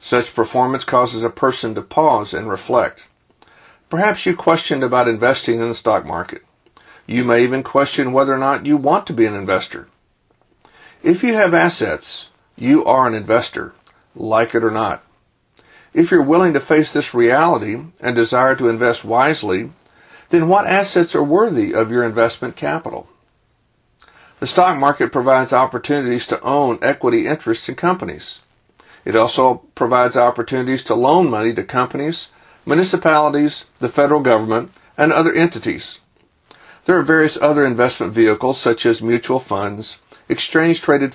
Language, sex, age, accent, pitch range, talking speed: English, male, 60-79, American, 120-150 Hz, 150 wpm